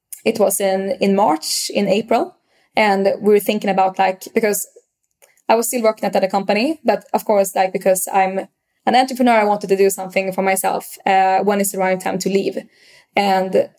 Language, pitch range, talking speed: English, 195-230 Hz, 200 wpm